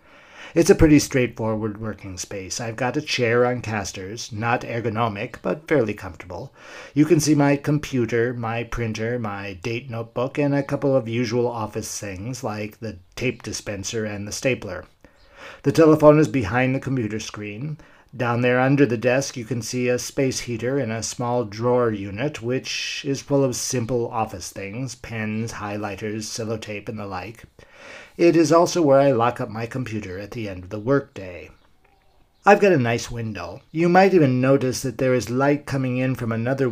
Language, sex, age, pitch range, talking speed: English, male, 50-69, 110-130 Hz, 180 wpm